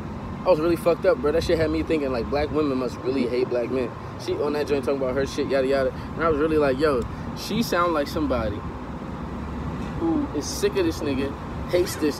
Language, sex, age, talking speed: English, male, 20-39, 230 wpm